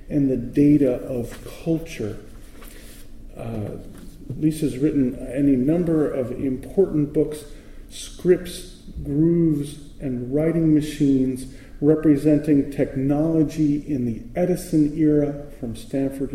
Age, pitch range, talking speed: 40-59, 115-150 Hz, 95 wpm